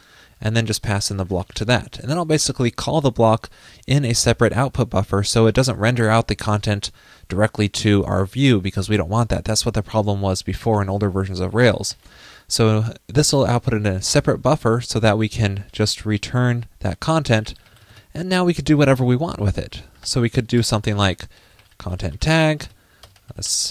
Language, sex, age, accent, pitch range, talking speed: English, male, 20-39, American, 100-120 Hz, 210 wpm